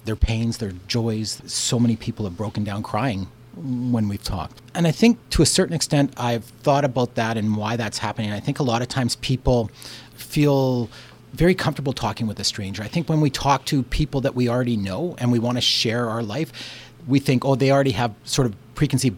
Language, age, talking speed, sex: English, 40-59, 220 wpm, male